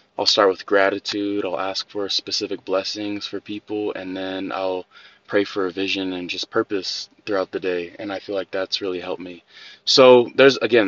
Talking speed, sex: 195 wpm, male